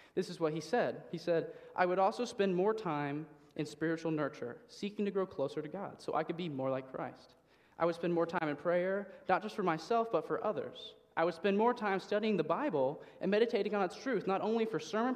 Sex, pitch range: male, 150-195 Hz